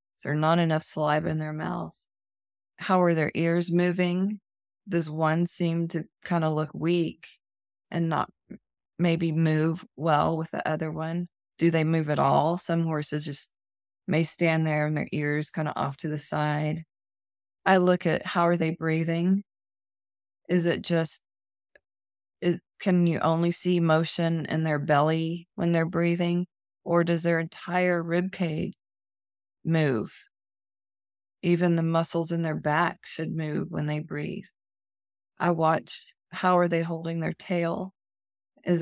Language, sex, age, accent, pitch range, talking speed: English, female, 20-39, American, 150-170 Hz, 150 wpm